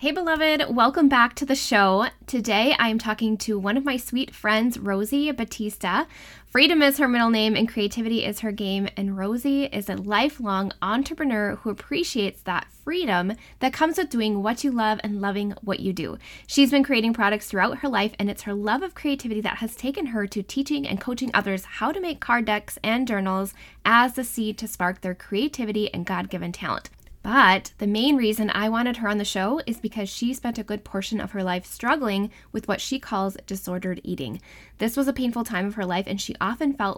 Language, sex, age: English, female, 10-29